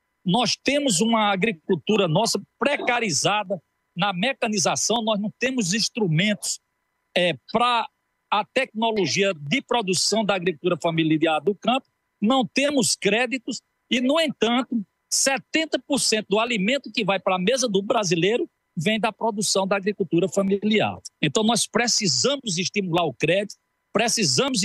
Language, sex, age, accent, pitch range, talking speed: Portuguese, male, 50-69, Brazilian, 180-230 Hz, 125 wpm